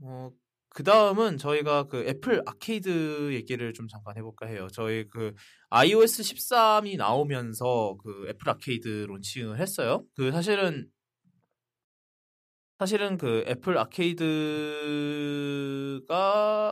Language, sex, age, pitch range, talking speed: English, male, 20-39, 125-185 Hz, 95 wpm